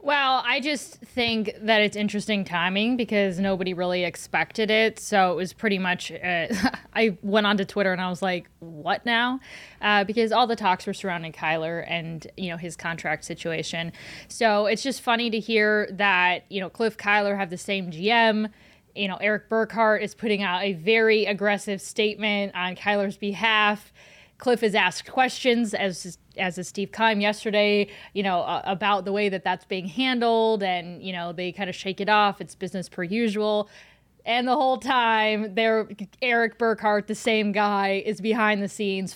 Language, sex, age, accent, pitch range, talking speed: English, female, 20-39, American, 190-230 Hz, 180 wpm